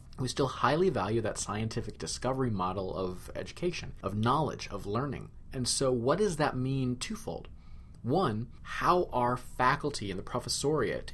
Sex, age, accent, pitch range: male, 30-49, American, 95-125 Hz